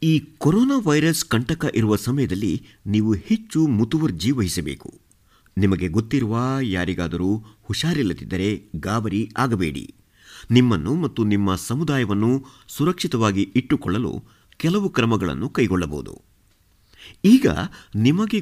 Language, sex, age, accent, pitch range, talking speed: Kannada, male, 50-69, native, 95-135 Hz, 90 wpm